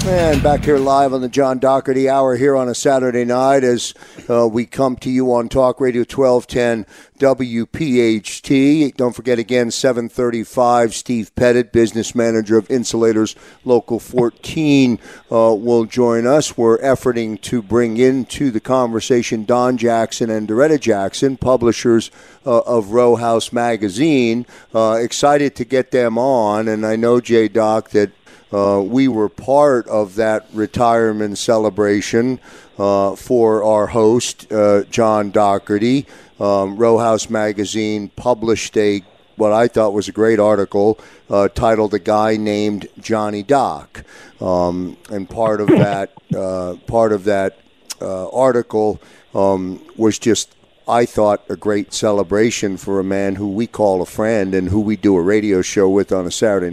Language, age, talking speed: English, 50-69, 150 wpm